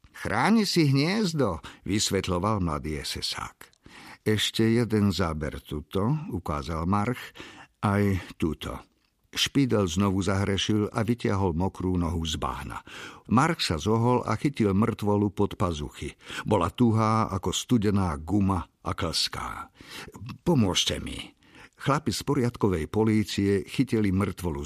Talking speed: 110 wpm